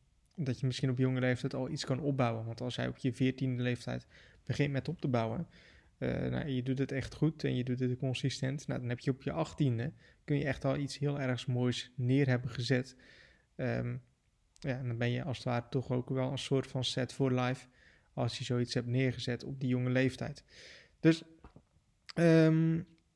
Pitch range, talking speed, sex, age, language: 125-150 Hz, 210 wpm, male, 20-39, Dutch